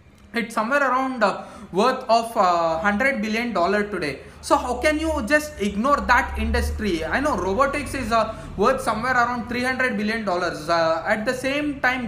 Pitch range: 190-270 Hz